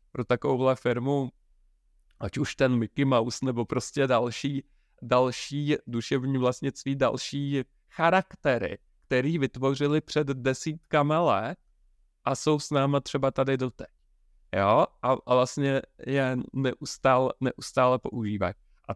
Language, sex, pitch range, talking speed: Czech, male, 125-140 Hz, 115 wpm